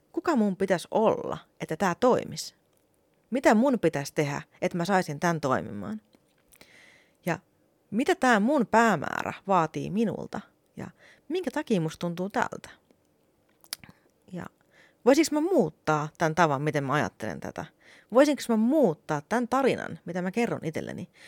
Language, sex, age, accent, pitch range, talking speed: Finnish, female, 30-49, native, 160-225 Hz, 135 wpm